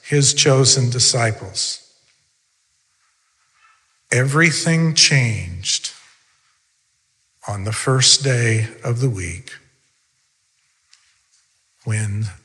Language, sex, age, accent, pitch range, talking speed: English, male, 50-69, American, 120-150 Hz, 65 wpm